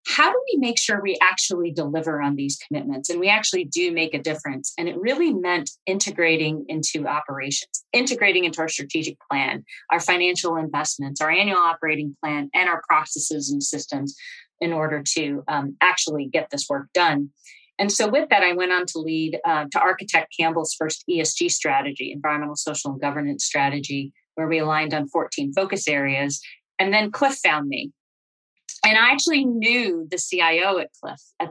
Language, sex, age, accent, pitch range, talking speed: English, female, 30-49, American, 155-200 Hz, 175 wpm